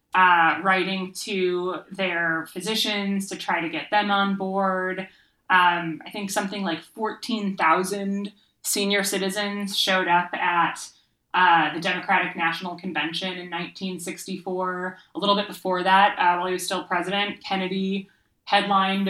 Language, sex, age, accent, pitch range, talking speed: English, female, 20-39, American, 170-200 Hz, 135 wpm